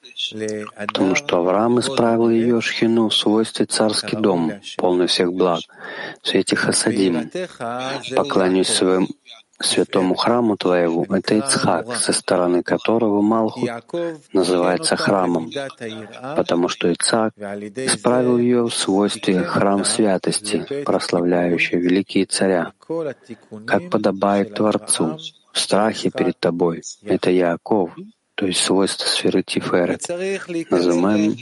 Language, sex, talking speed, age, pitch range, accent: Russian, male, 105 wpm, 40-59, 95-115 Hz, native